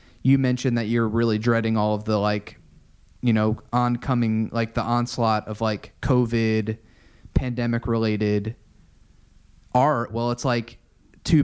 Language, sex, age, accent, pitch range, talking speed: English, male, 20-39, American, 110-125 Hz, 135 wpm